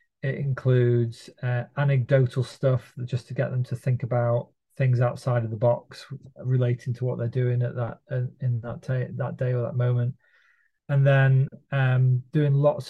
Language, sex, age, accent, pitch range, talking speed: English, male, 30-49, British, 120-140 Hz, 185 wpm